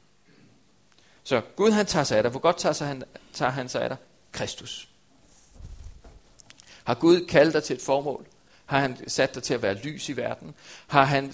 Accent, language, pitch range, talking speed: native, Danish, 125-155 Hz, 180 wpm